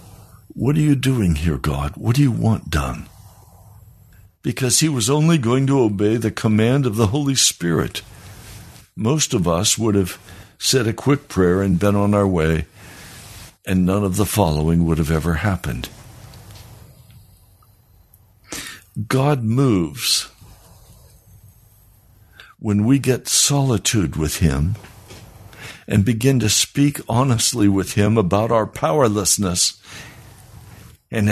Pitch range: 95-120 Hz